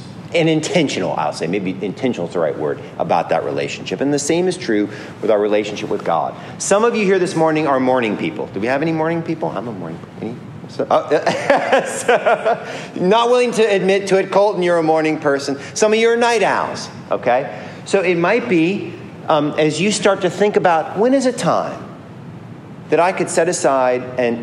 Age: 40-59